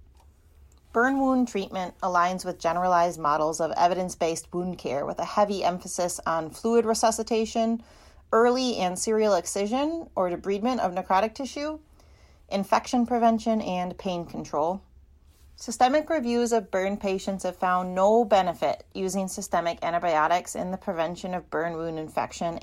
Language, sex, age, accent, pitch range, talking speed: English, female, 30-49, American, 170-230 Hz, 135 wpm